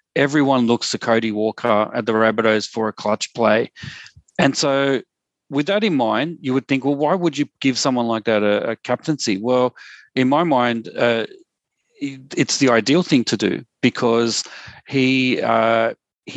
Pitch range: 110-135 Hz